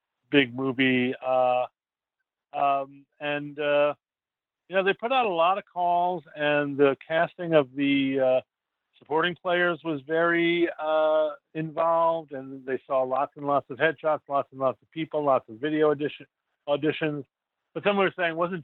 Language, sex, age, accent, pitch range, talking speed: English, male, 50-69, American, 135-170 Hz, 160 wpm